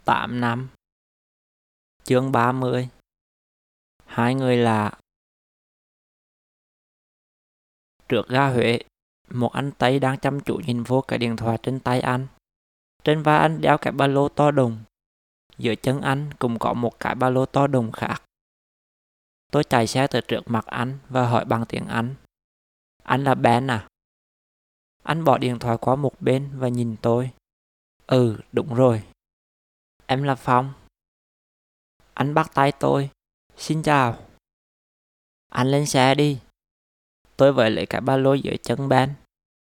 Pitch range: 110-135 Hz